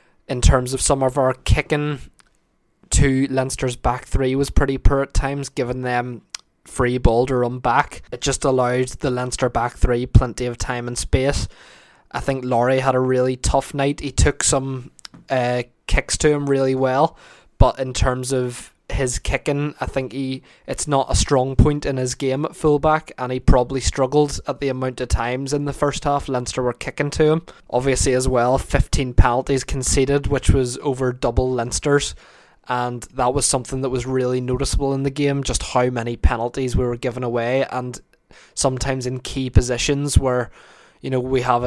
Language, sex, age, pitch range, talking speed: English, male, 20-39, 125-135 Hz, 185 wpm